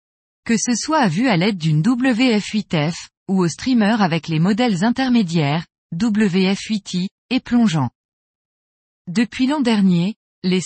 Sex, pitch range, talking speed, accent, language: female, 180-245 Hz, 130 wpm, French, French